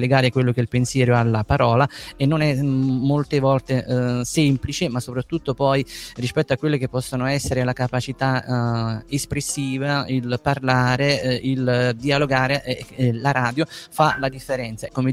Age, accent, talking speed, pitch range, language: 30-49, native, 165 wpm, 130-150 Hz, Italian